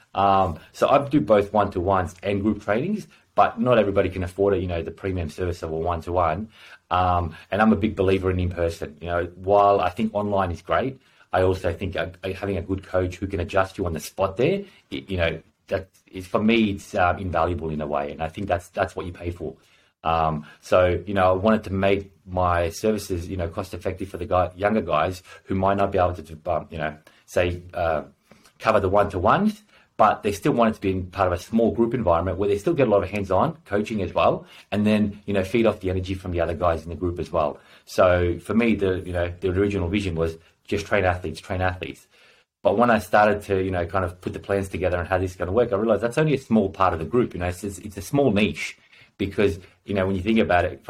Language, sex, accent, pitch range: English, male, Australian, 90-105 Hz